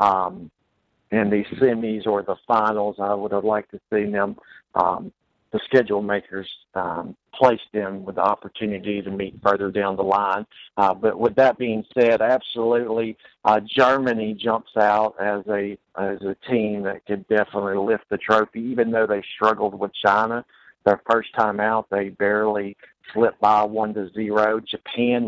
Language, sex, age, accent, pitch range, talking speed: English, male, 50-69, American, 100-110 Hz, 165 wpm